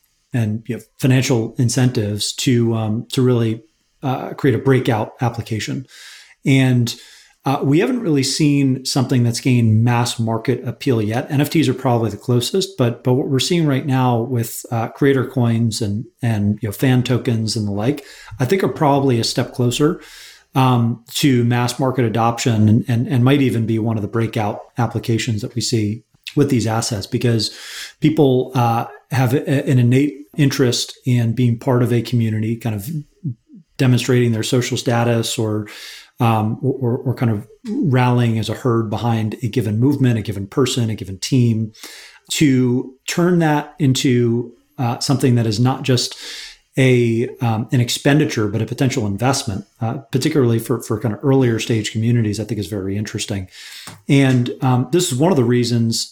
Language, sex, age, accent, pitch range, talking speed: English, male, 30-49, American, 115-135 Hz, 170 wpm